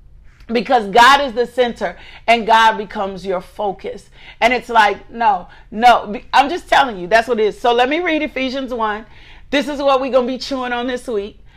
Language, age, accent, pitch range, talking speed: English, 40-59, American, 220-260 Hz, 205 wpm